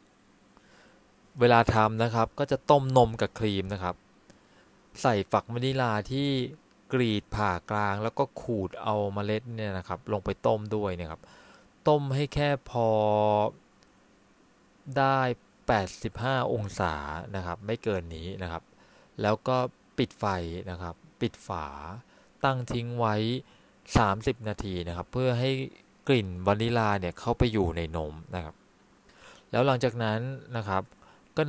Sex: male